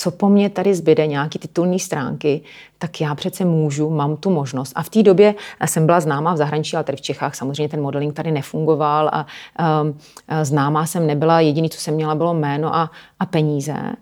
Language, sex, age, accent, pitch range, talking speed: Czech, female, 30-49, native, 150-170 Hz, 205 wpm